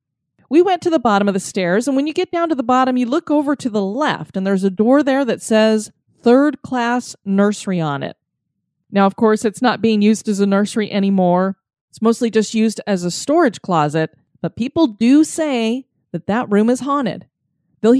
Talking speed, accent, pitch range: 210 wpm, American, 190-255 Hz